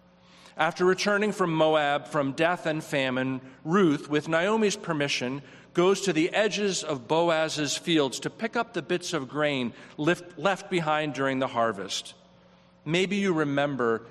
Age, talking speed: 40-59, 145 wpm